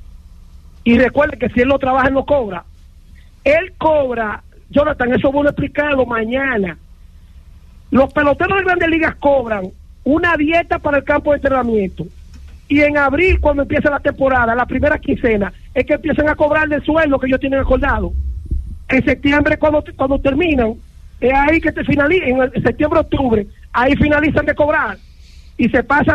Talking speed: 165 wpm